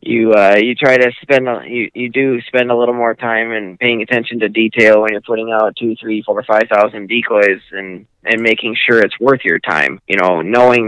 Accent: American